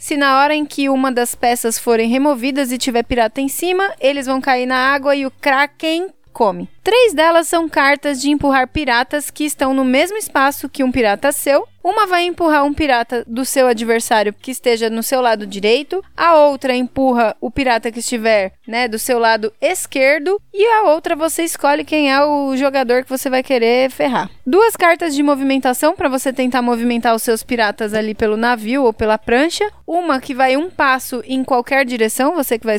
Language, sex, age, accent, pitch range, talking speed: Portuguese, female, 20-39, Brazilian, 250-315 Hz, 195 wpm